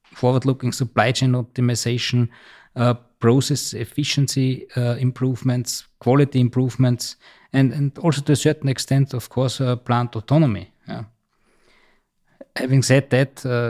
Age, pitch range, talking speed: 20-39, 115-130 Hz, 115 wpm